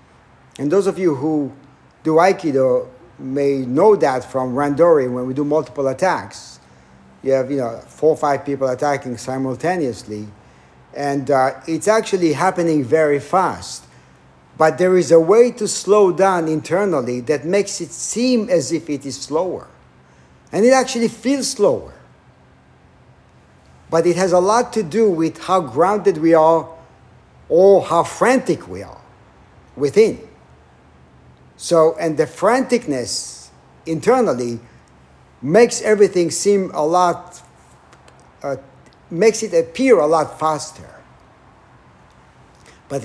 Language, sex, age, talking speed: English, male, 50-69, 130 wpm